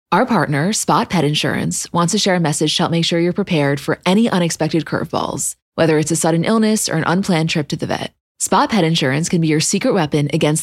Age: 20-39